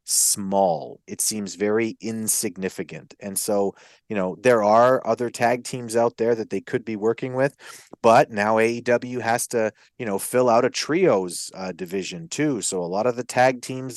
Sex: male